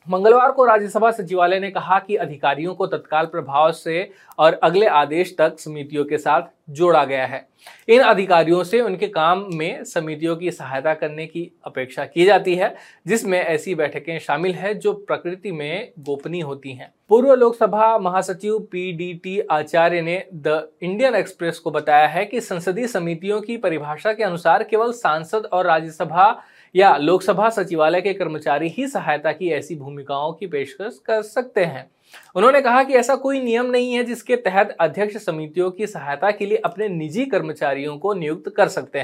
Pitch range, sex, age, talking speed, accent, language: 155-210 Hz, male, 20-39, 170 wpm, native, Hindi